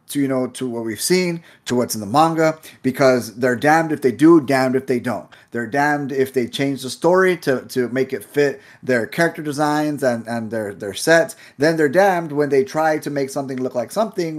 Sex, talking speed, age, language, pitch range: male, 225 wpm, 30-49, English, 115-145 Hz